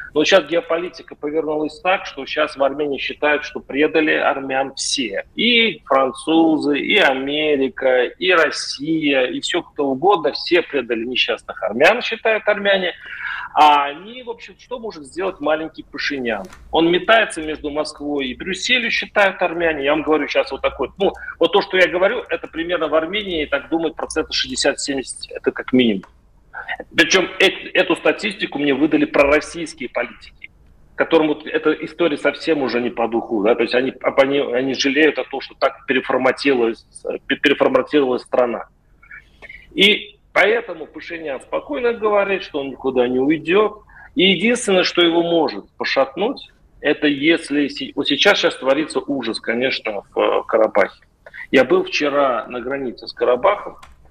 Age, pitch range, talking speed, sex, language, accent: 40-59, 140-190 Hz, 145 wpm, male, Russian, native